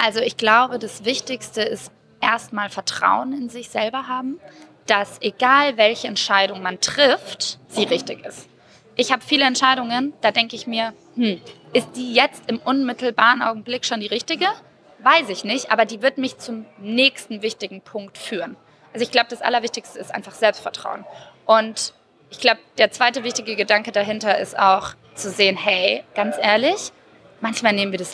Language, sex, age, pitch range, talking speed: German, female, 20-39, 200-250 Hz, 165 wpm